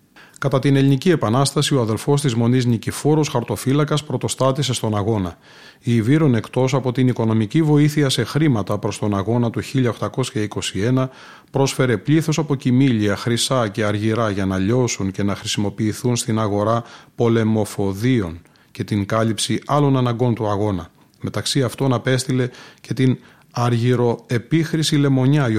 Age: 30-49